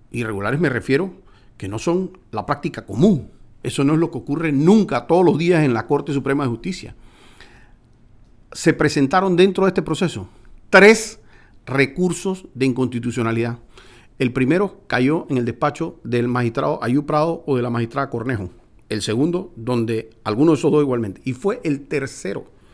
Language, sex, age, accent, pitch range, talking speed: Spanish, male, 50-69, Venezuelan, 120-170 Hz, 165 wpm